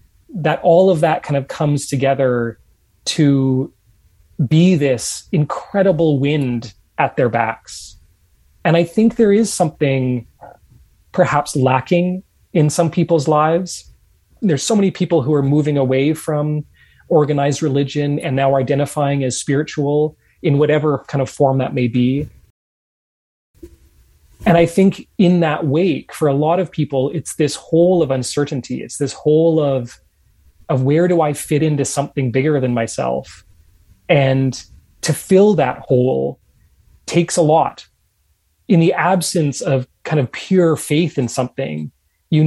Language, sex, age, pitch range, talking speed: English, male, 30-49, 120-160 Hz, 145 wpm